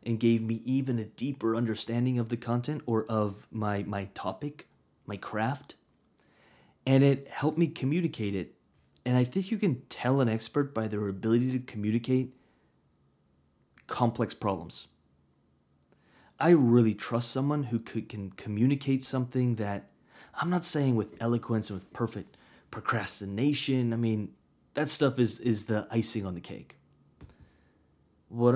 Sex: male